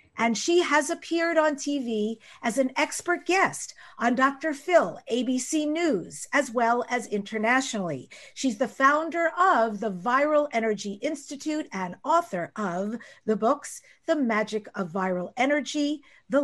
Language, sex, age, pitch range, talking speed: English, female, 50-69, 210-300 Hz, 140 wpm